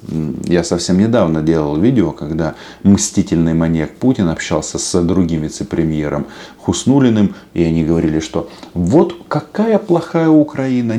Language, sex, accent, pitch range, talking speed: Russian, male, native, 85-120 Hz, 120 wpm